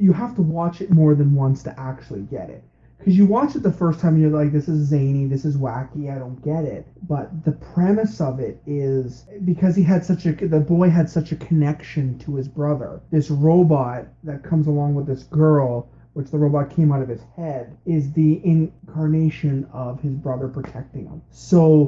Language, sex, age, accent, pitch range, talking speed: English, male, 30-49, American, 135-155 Hz, 210 wpm